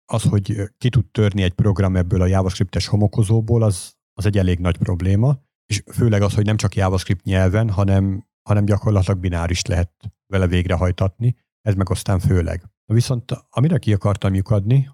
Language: Hungarian